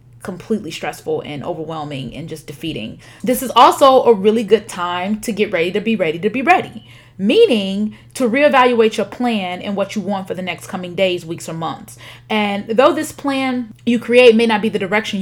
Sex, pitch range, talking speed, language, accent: female, 170-225 Hz, 200 wpm, English, American